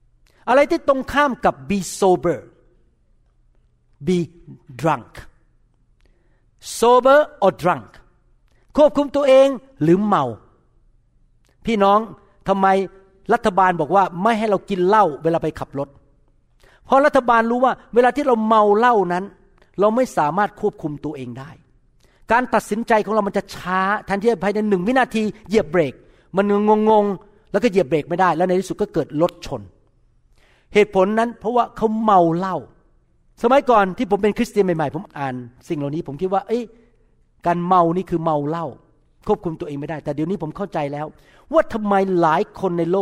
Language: Thai